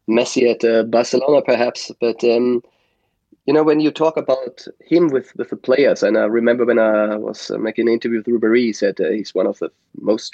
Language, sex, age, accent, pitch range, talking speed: English, male, 30-49, German, 125-150 Hz, 220 wpm